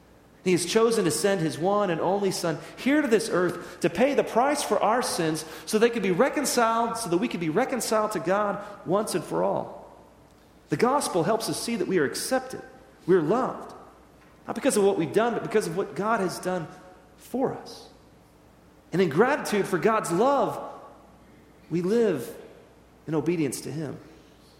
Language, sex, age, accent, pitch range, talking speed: English, male, 40-59, American, 170-220 Hz, 190 wpm